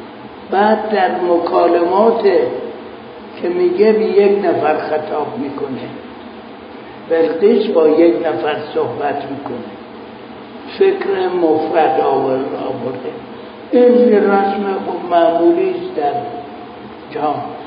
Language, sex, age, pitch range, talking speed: Persian, male, 60-79, 165-245 Hz, 95 wpm